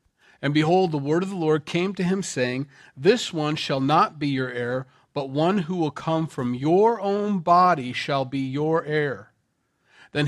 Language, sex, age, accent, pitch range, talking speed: English, male, 40-59, American, 130-170 Hz, 185 wpm